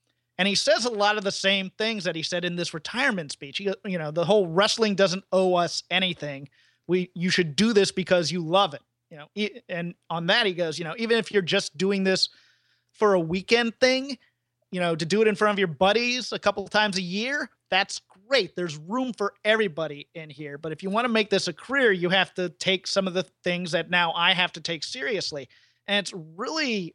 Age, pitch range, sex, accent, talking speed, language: 30-49, 165-205 Hz, male, American, 235 wpm, English